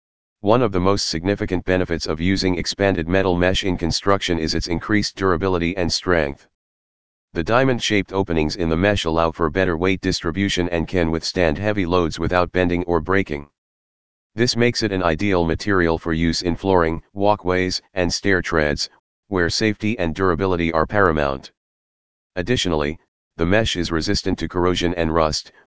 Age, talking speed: 40-59, 160 wpm